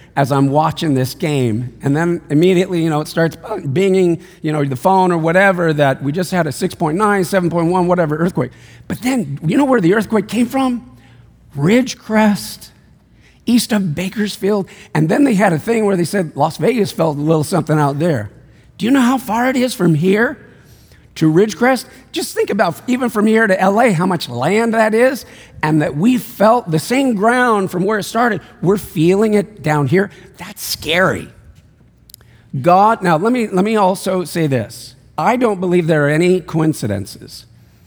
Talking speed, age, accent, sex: 185 wpm, 50-69, American, male